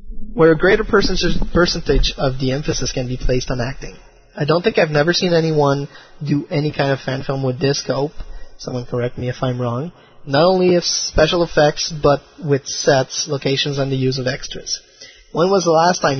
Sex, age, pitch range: male, 20-39, 130-160 Hz